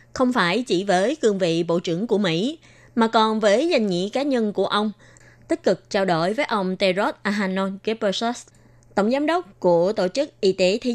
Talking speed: 205 wpm